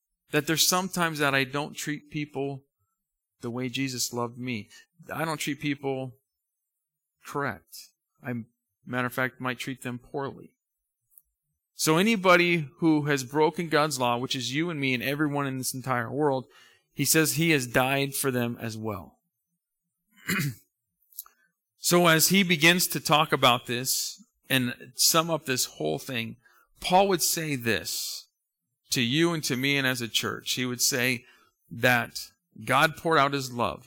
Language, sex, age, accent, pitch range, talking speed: English, male, 40-59, American, 120-150 Hz, 160 wpm